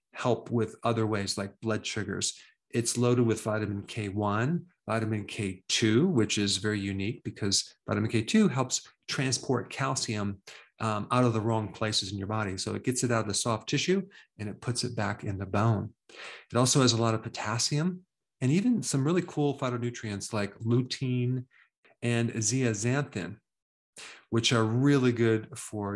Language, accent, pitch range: English, American, 105-125 Hz